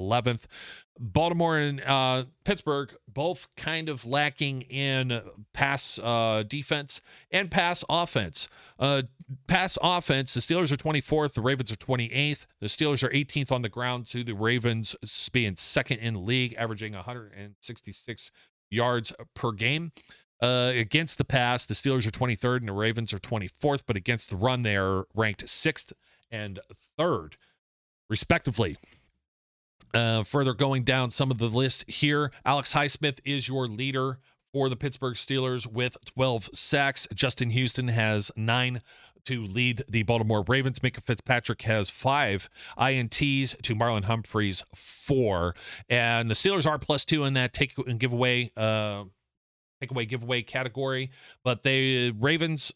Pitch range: 110-135 Hz